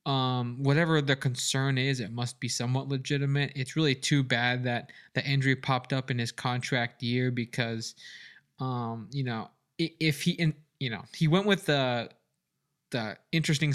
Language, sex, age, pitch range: English, male, 20-39, 120-140 Hz